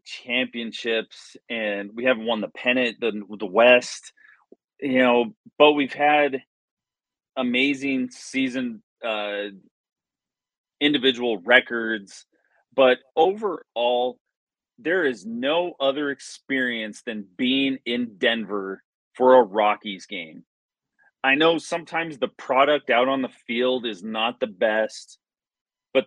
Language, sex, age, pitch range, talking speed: English, male, 30-49, 115-140 Hz, 115 wpm